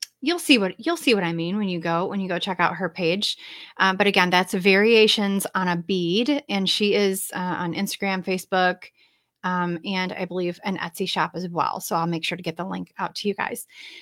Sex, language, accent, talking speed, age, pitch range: female, English, American, 230 wpm, 30-49, 180-220 Hz